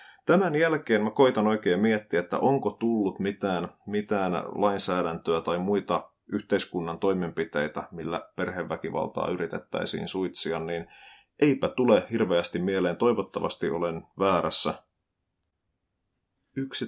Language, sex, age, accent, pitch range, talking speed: Finnish, male, 30-49, native, 90-110 Hz, 105 wpm